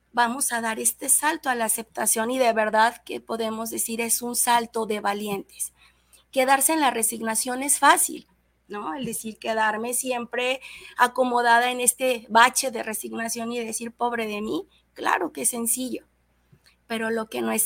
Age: 30-49